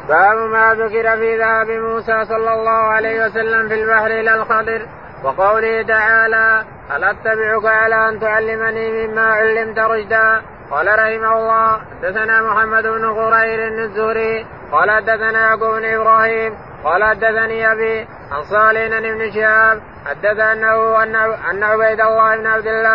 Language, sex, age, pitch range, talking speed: Arabic, male, 20-39, 220-225 Hz, 130 wpm